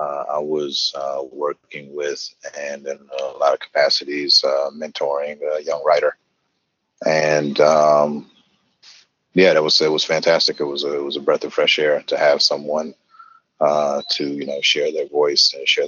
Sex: male